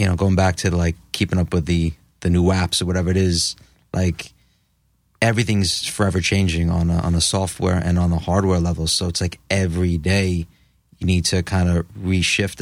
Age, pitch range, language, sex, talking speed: 30-49, 85-95 Hz, English, male, 200 wpm